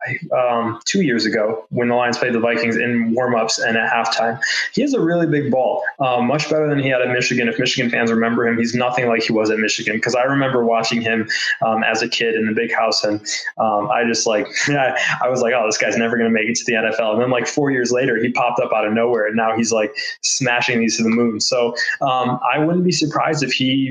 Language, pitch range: English, 115-130 Hz